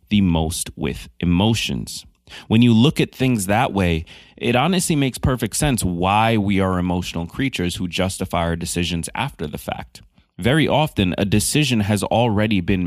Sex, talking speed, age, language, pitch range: male, 165 wpm, 30-49, English, 90-115 Hz